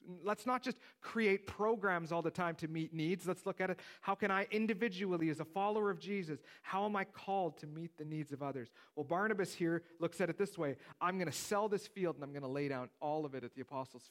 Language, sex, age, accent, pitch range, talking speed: English, male, 40-59, American, 135-190 Hz, 245 wpm